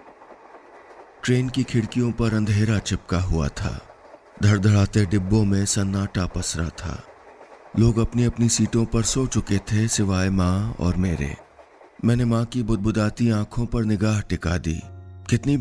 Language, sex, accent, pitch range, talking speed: Hindi, male, native, 100-120 Hz, 140 wpm